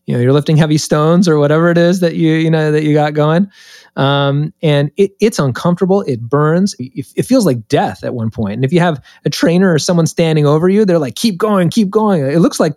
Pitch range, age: 130-175 Hz, 30-49